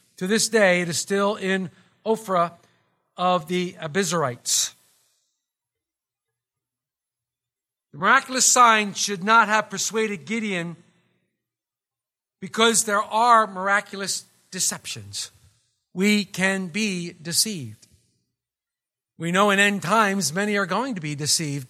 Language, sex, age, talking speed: English, male, 50-69, 110 wpm